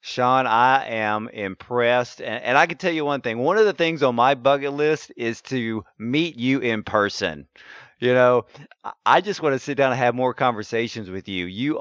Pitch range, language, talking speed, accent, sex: 110-130 Hz, English, 210 wpm, American, male